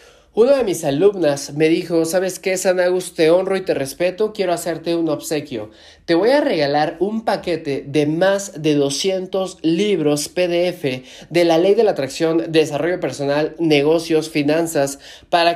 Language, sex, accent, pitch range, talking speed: Spanish, male, Mexican, 155-195 Hz, 160 wpm